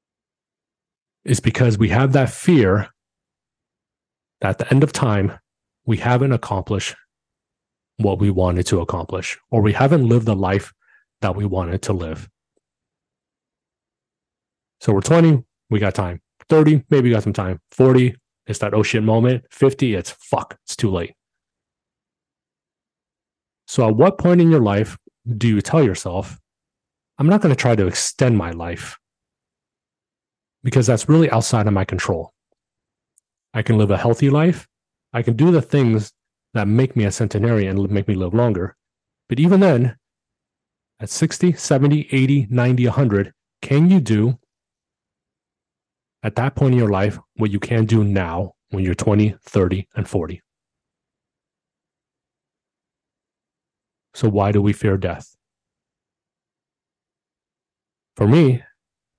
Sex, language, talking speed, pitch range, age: male, English, 140 wpm, 100-130 Hz, 30-49